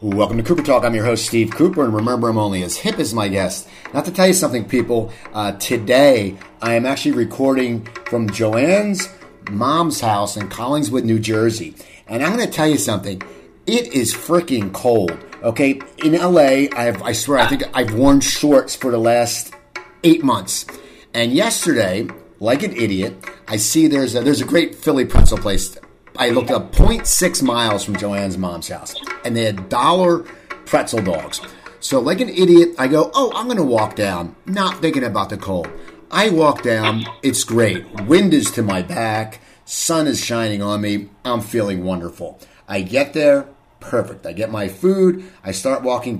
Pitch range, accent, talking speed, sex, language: 105-140 Hz, American, 180 wpm, male, English